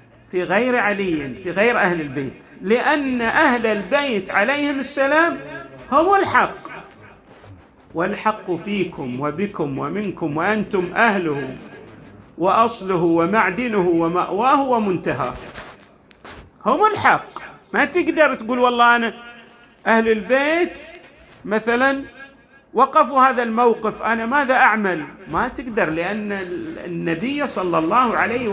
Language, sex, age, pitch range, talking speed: Arabic, male, 50-69, 200-275 Hz, 100 wpm